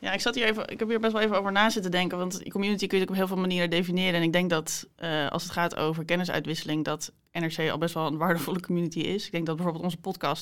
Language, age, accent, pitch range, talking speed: English, 20-39, Dutch, 155-180 Hz, 295 wpm